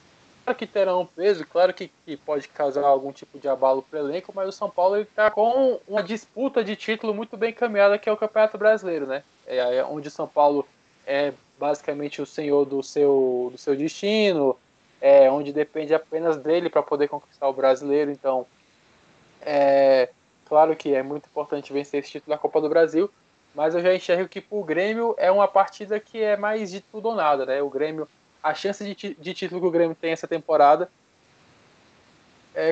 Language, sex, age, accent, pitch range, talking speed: Portuguese, male, 20-39, Brazilian, 145-195 Hz, 195 wpm